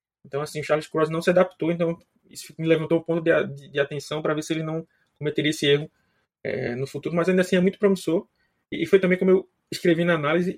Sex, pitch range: male, 145-190 Hz